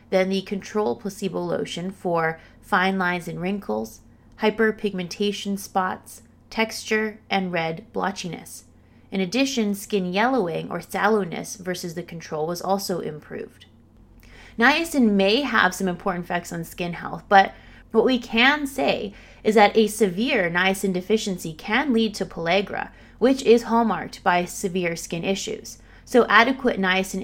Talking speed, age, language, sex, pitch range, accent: 135 wpm, 30-49, English, female, 175-225 Hz, American